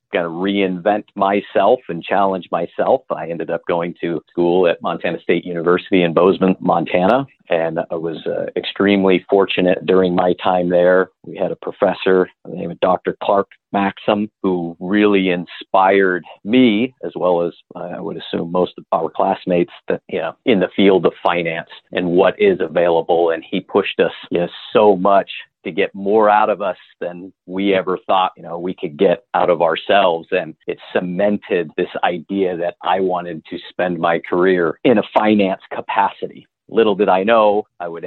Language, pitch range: English, 85-100 Hz